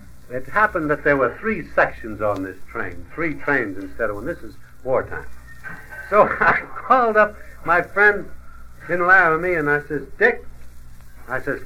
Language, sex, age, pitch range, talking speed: English, male, 60-79, 125-185 Hz, 165 wpm